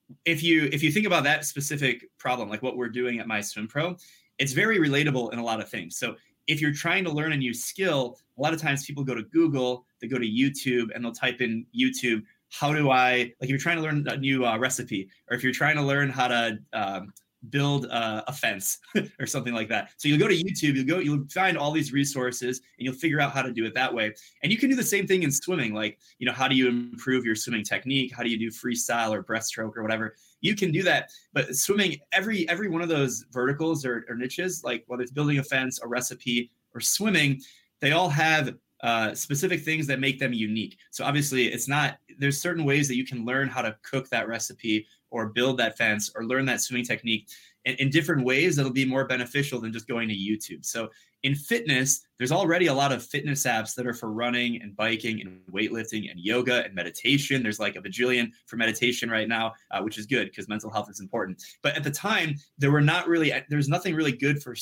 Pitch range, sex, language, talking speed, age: 120-145 Hz, male, English, 235 wpm, 20-39